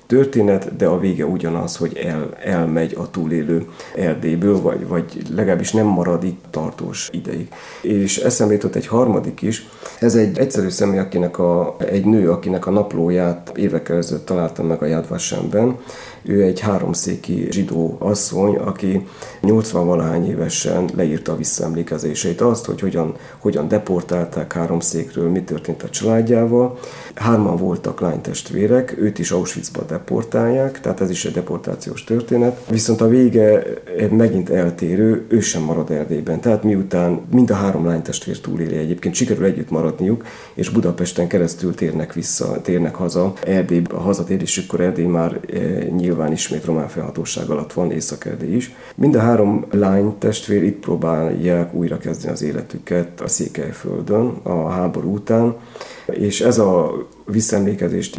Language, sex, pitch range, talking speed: Hungarian, male, 85-105 Hz, 135 wpm